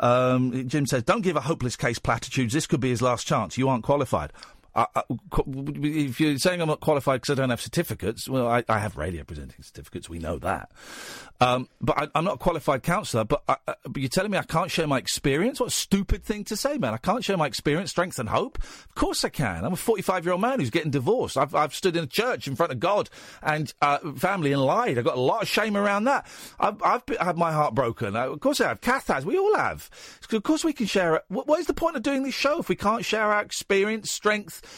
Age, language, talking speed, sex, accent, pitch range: 40-59, English, 255 wpm, male, British, 130-195 Hz